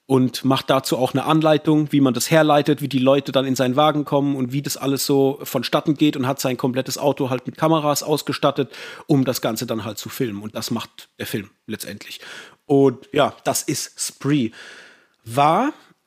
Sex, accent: male, German